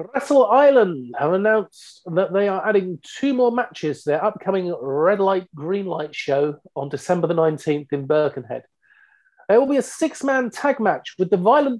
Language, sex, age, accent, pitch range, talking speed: English, male, 40-59, British, 170-250 Hz, 180 wpm